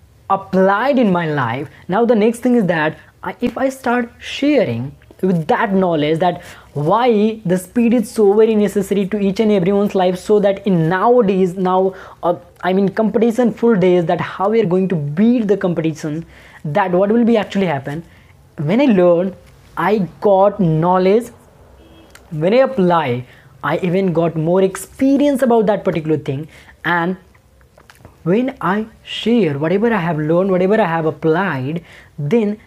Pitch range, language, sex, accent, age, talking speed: 170-230 Hz, English, female, Indian, 20-39, 160 wpm